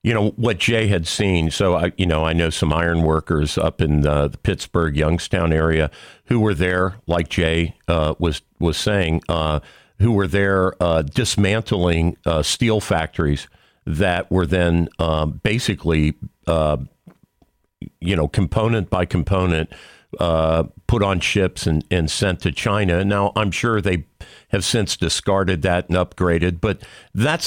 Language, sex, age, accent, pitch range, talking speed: English, male, 50-69, American, 80-105 Hz, 160 wpm